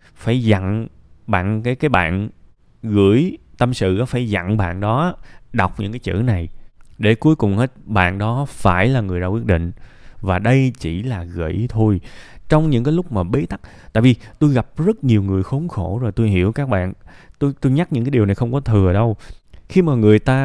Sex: male